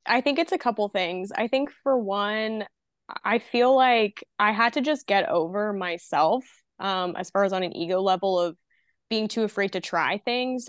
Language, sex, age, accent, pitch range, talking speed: English, female, 20-39, American, 180-225 Hz, 195 wpm